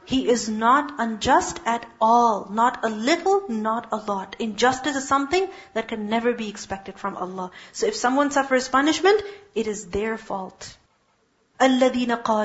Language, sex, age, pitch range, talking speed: English, female, 40-59, 230-305 Hz, 150 wpm